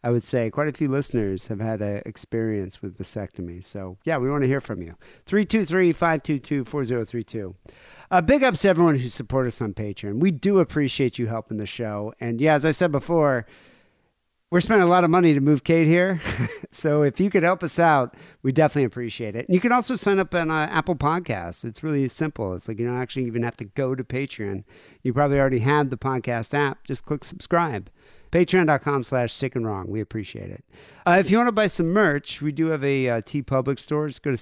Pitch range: 115-155 Hz